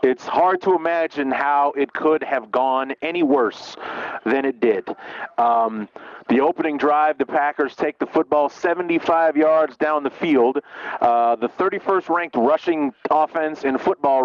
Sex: male